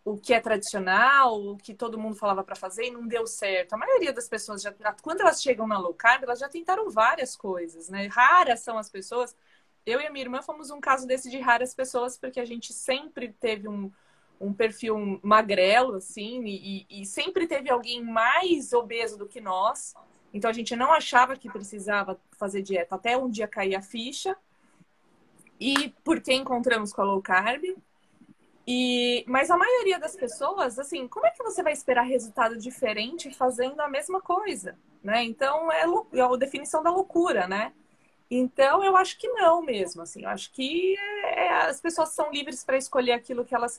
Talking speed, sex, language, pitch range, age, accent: 190 wpm, female, Portuguese, 220-320 Hz, 20-39, Brazilian